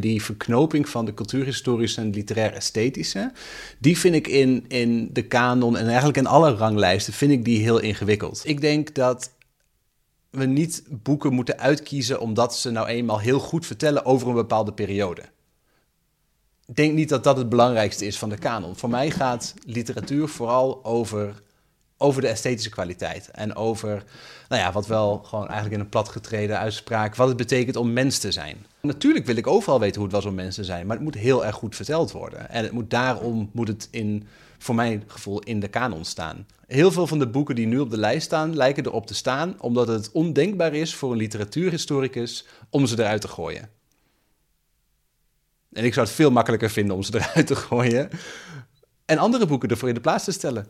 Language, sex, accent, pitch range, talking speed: Dutch, male, Dutch, 110-140 Hz, 190 wpm